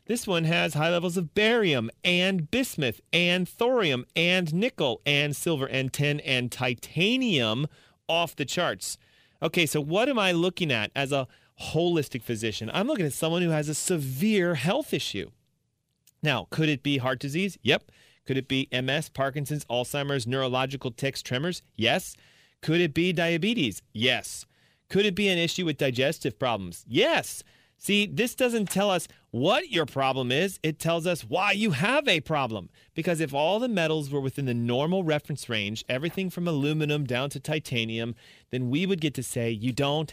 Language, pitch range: English, 135-185 Hz